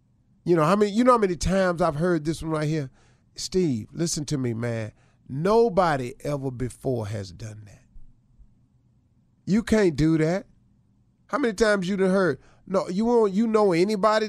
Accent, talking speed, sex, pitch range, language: American, 180 wpm, male, 125-195 Hz, English